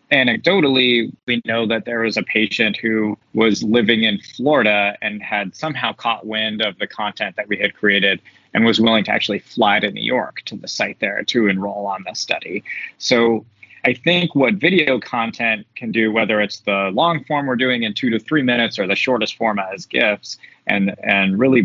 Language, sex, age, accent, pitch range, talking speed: English, male, 30-49, American, 105-135 Hz, 200 wpm